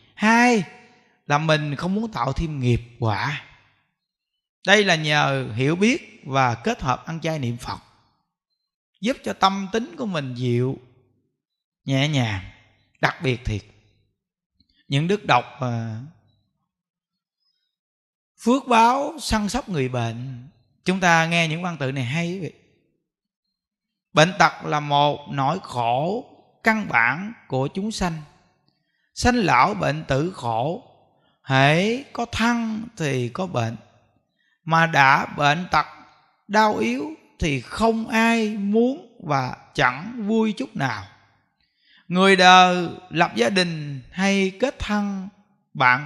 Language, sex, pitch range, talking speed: Vietnamese, male, 130-205 Hz, 130 wpm